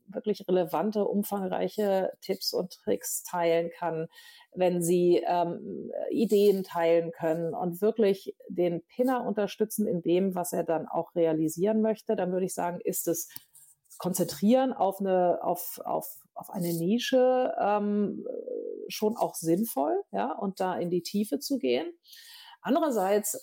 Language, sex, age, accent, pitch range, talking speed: German, female, 50-69, German, 180-240 Hz, 140 wpm